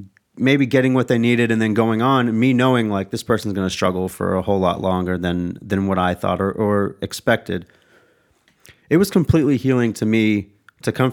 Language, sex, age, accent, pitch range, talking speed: English, male, 30-49, American, 100-120 Hz, 205 wpm